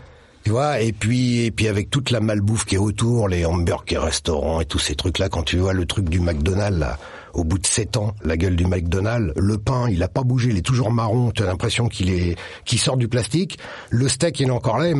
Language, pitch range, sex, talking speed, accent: French, 100-145 Hz, male, 260 wpm, French